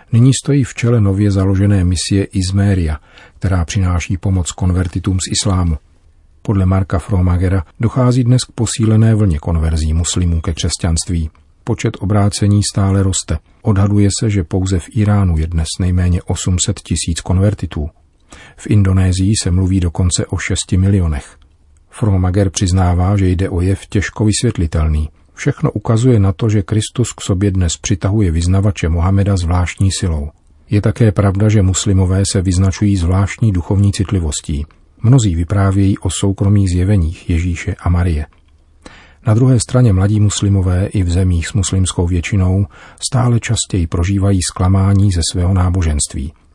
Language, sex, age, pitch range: Czech, male, 40-59, 85-105 Hz